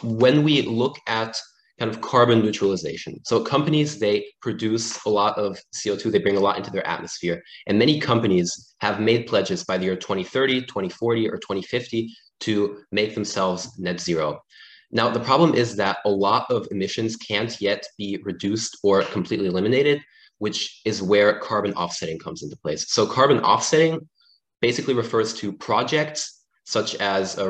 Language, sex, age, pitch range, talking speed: German, male, 20-39, 105-130 Hz, 165 wpm